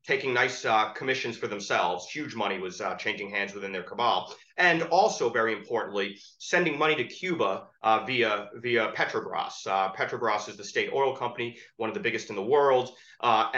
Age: 30-49